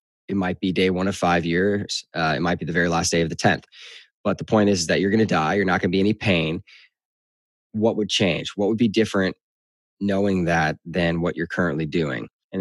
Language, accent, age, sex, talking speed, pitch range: English, American, 20-39, male, 240 wpm, 85-100 Hz